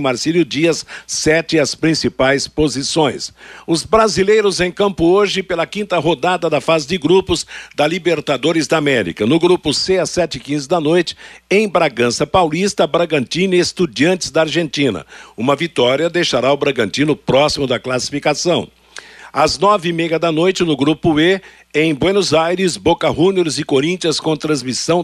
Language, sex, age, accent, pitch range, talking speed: Portuguese, male, 60-79, Brazilian, 140-175 Hz, 145 wpm